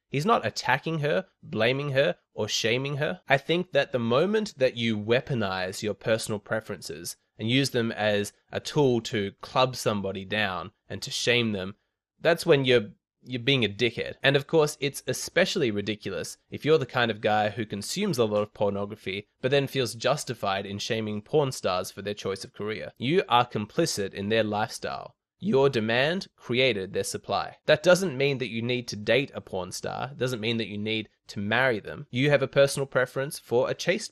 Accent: Australian